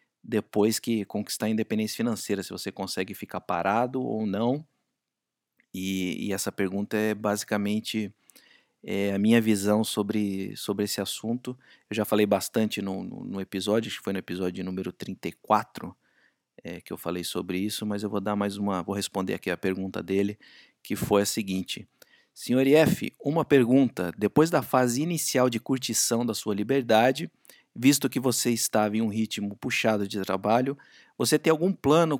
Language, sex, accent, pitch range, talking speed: Portuguese, male, Brazilian, 105-135 Hz, 170 wpm